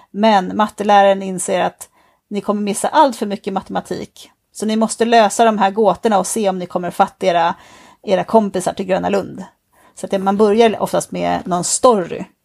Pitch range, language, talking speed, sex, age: 190-230 Hz, Swedish, 185 wpm, female, 30-49